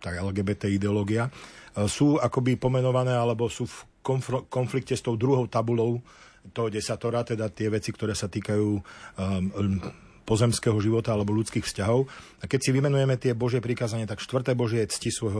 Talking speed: 165 wpm